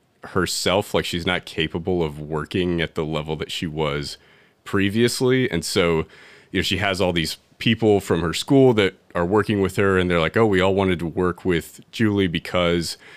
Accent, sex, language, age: American, male, English, 30-49